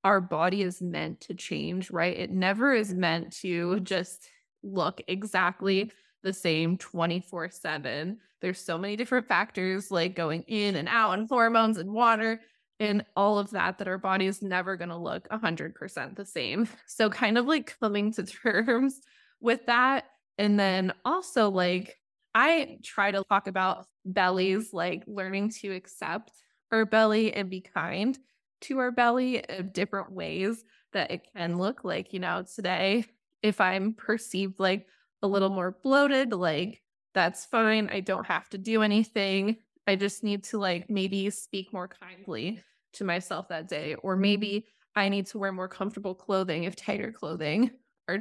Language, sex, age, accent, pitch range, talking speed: English, female, 20-39, American, 185-220 Hz, 165 wpm